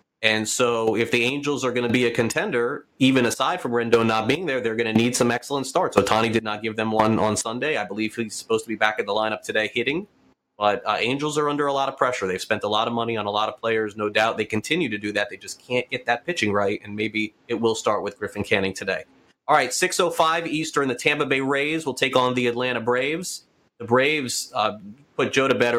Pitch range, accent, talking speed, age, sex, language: 110-130 Hz, American, 260 wpm, 30-49, male, English